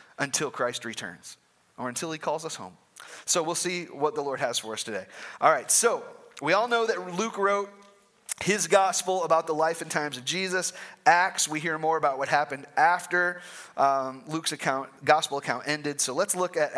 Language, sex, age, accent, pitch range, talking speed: English, male, 30-49, American, 145-195 Hz, 195 wpm